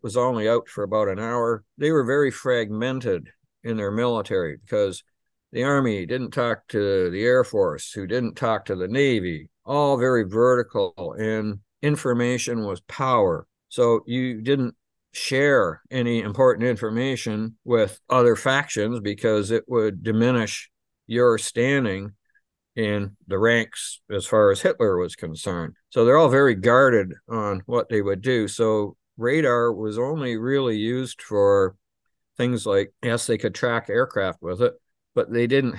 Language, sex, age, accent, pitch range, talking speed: English, male, 60-79, American, 110-140 Hz, 150 wpm